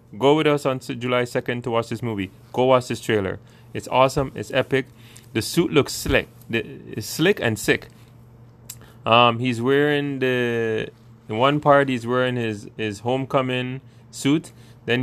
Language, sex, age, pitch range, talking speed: English, male, 20-39, 115-135 Hz, 165 wpm